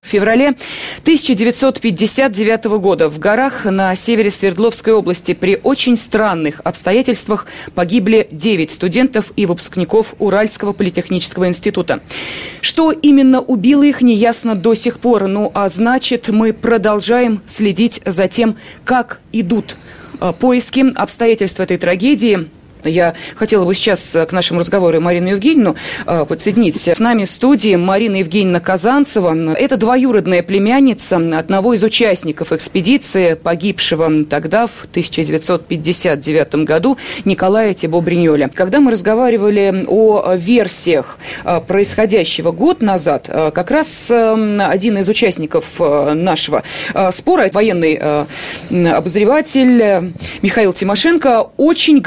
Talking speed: 110 wpm